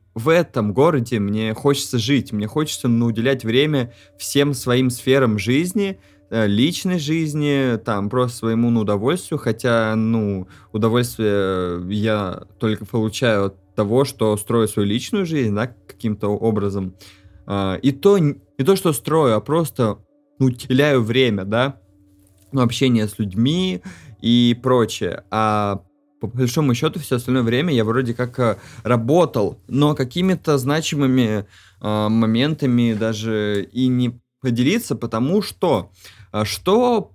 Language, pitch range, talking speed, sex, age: Russian, 105-140 Hz, 125 wpm, male, 20-39